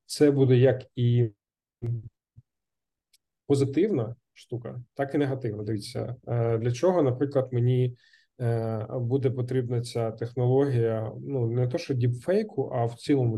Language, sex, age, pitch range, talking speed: Ukrainian, male, 20-39, 115-135 Hz, 115 wpm